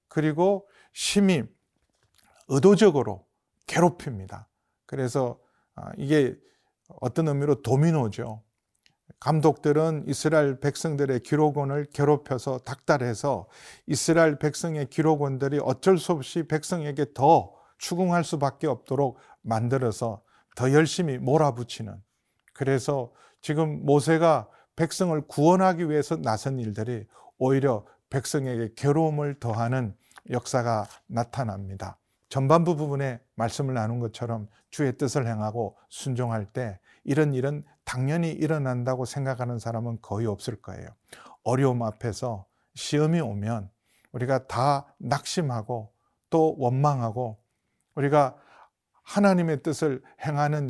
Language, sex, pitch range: Korean, male, 120-155 Hz